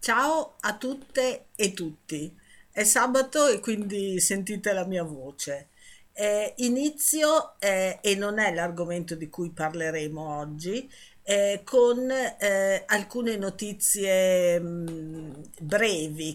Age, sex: 50-69, female